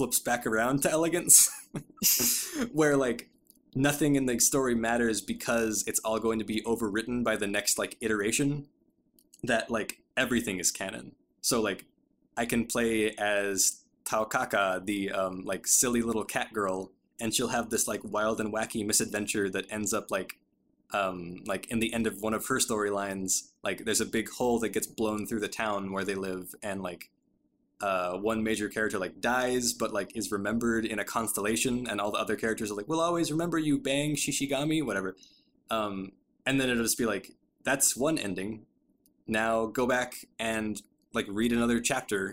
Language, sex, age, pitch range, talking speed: English, male, 20-39, 105-130 Hz, 180 wpm